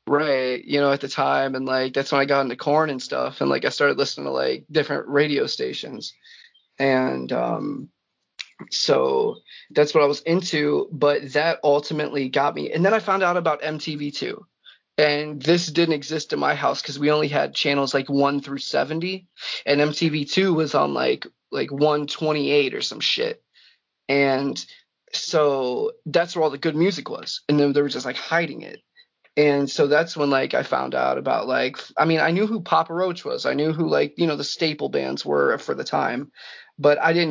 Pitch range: 140-165 Hz